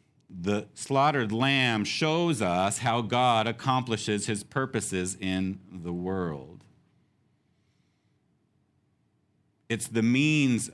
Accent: American